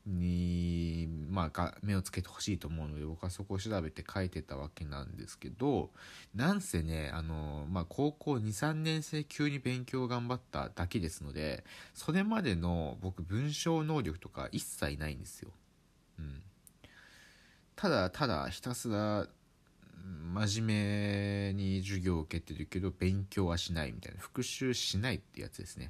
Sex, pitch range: male, 85-125 Hz